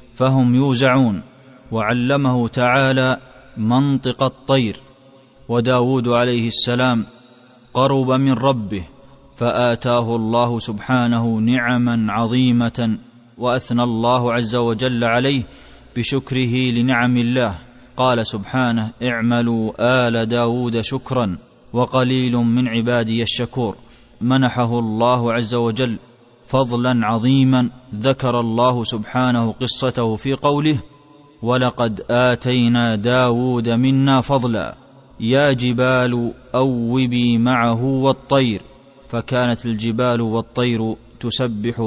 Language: Arabic